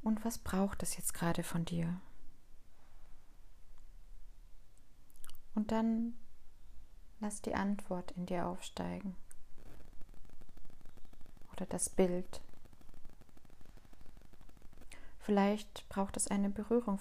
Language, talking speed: German, 85 wpm